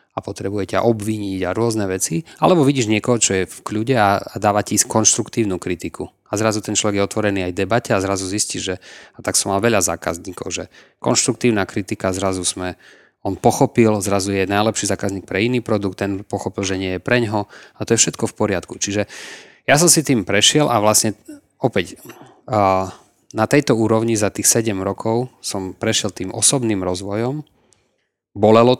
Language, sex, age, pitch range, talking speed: Slovak, male, 30-49, 95-115 Hz, 175 wpm